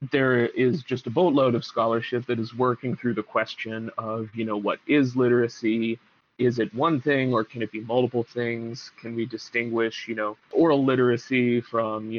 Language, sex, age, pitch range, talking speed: English, male, 30-49, 115-130 Hz, 185 wpm